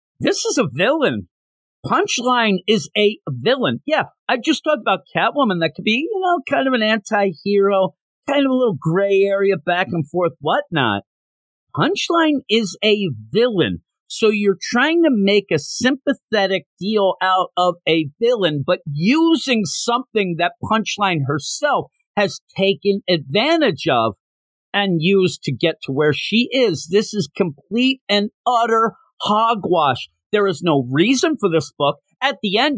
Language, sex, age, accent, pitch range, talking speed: English, male, 50-69, American, 165-235 Hz, 150 wpm